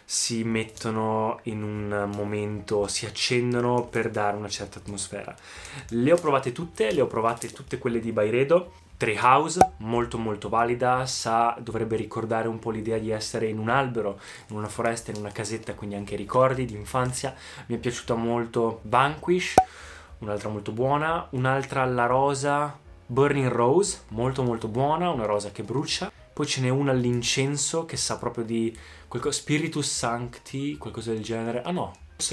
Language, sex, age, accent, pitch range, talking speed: Italian, male, 20-39, native, 110-130 Hz, 160 wpm